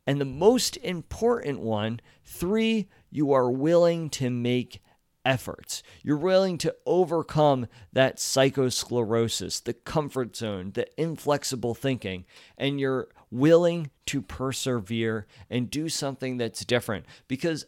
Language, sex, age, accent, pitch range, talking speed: English, male, 40-59, American, 115-145 Hz, 120 wpm